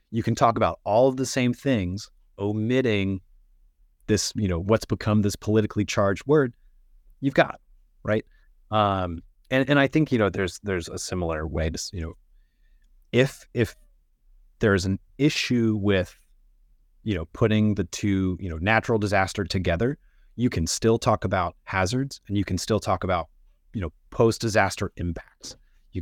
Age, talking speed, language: 30-49, 160 wpm, English